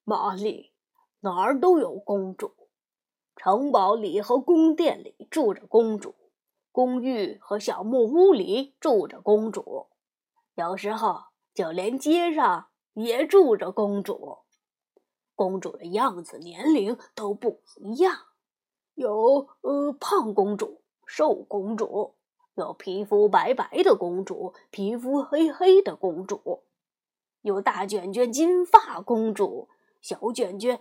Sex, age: female, 20-39